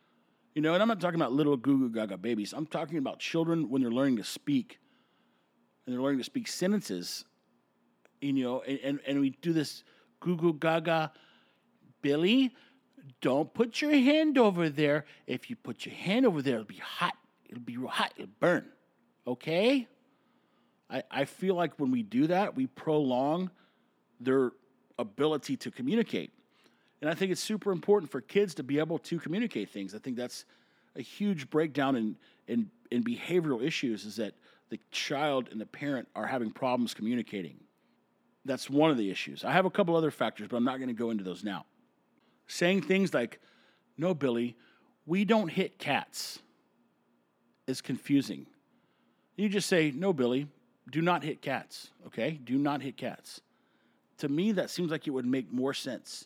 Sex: male